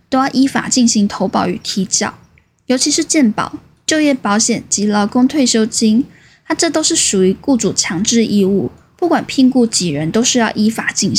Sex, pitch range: female, 200-255 Hz